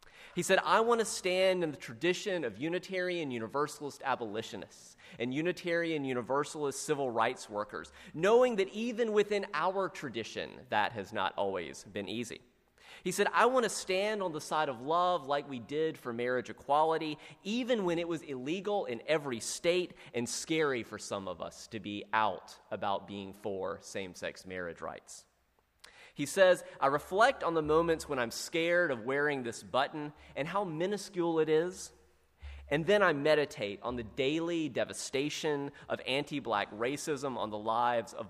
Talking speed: 165 wpm